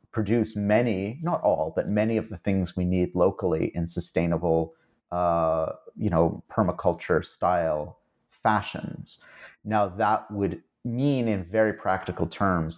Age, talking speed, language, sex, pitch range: 30-49, 130 wpm, English, male, 85-100 Hz